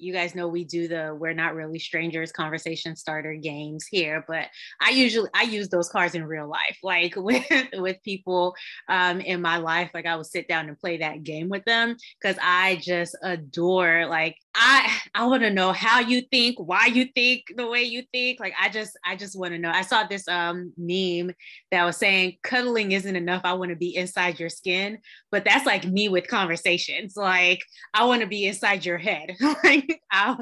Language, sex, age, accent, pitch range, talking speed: English, female, 20-39, American, 170-210 Hz, 205 wpm